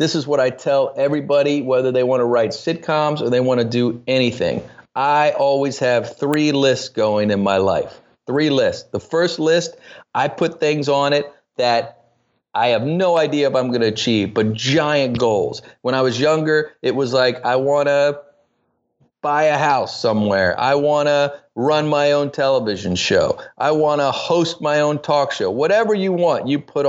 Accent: American